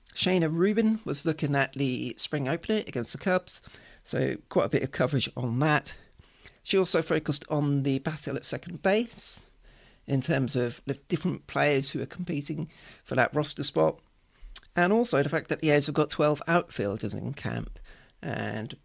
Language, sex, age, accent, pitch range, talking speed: English, male, 40-59, British, 130-175 Hz, 175 wpm